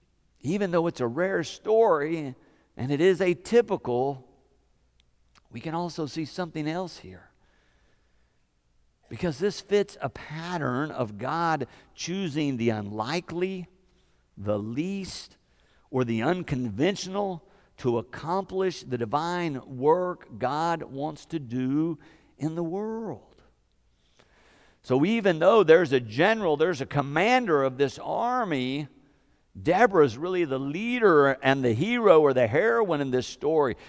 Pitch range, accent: 125-200 Hz, American